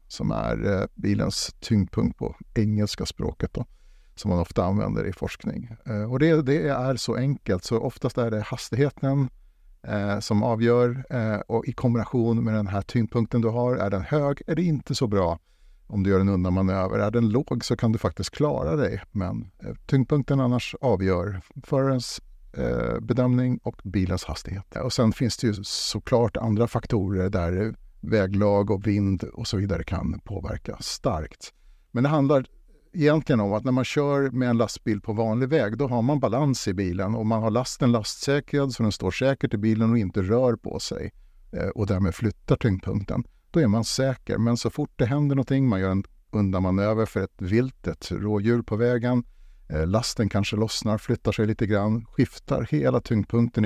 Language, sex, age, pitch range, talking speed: Swedish, male, 50-69, 100-125 Hz, 180 wpm